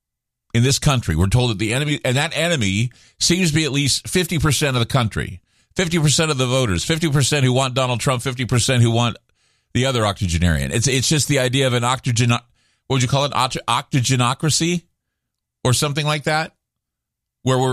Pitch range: 115-145 Hz